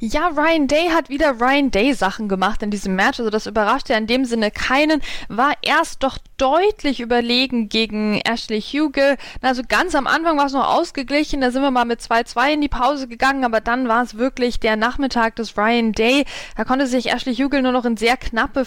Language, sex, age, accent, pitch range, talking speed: German, female, 10-29, German, 235-300 Hz, 210 wpm